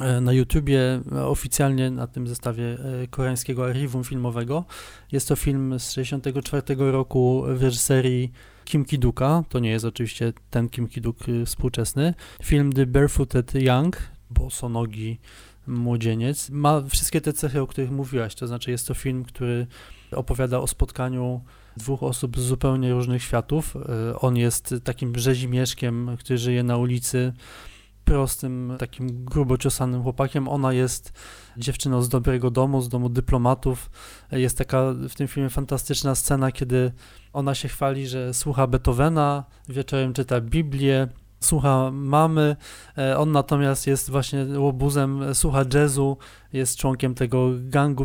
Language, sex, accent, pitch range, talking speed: Polish, male, native, 125-140 Hz, 135 wpm